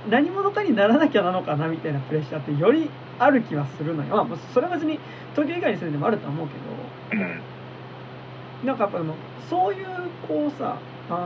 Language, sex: Japanese, male